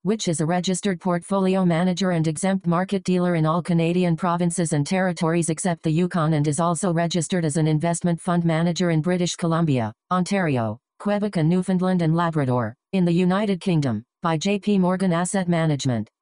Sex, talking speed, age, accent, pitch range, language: female, 170 wpm, 40-59, American, 160-185 Hz, English